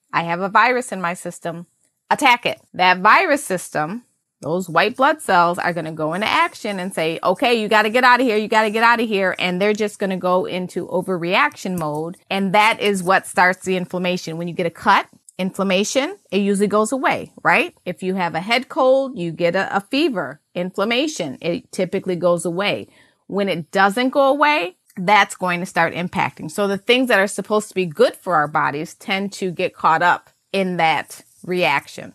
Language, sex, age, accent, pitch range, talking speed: English, female, 30-49, American, 175-215 Hz, 200 wpm